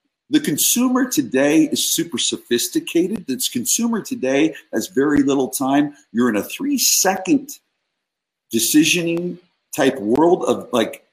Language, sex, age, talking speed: English, male, 50-69, 125 wpm